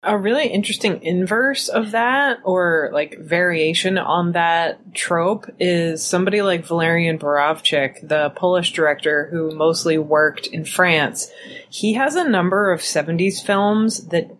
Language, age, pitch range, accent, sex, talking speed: English, 20-39, 160-190 Hz, American, female, 140 wpm